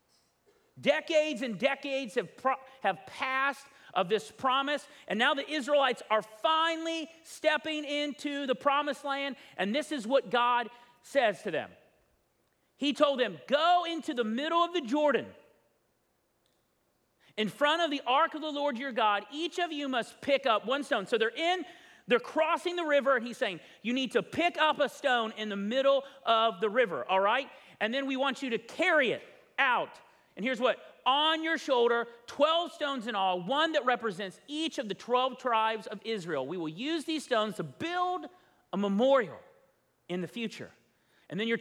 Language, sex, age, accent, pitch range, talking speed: English, male, 40-59, American, 195-290 Hz, 180 wpm